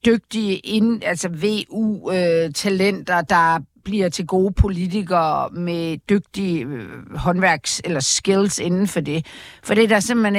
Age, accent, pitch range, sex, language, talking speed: 50-69, native, 175-225 Hz, female, Danish, 140 wpm